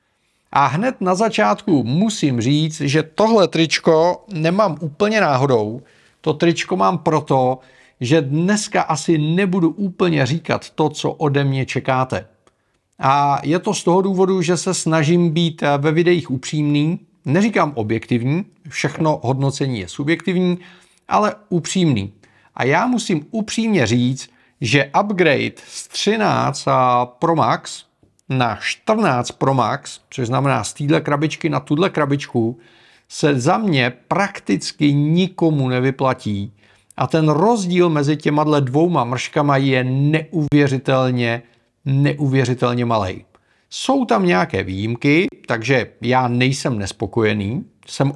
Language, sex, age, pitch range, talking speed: Czech, male, 40-59, 125-175 Hz, 120 wpm